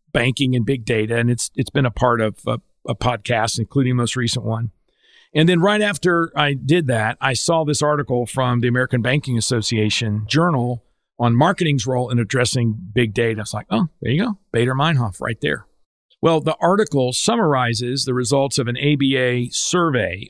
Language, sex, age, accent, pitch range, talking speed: English, male, 50-69, American, 120-150 Hz, 185 wpm